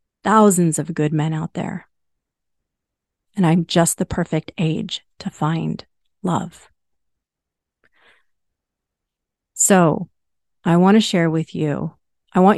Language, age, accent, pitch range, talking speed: English, 30-49, American, 165-200 Hz, 115 wpm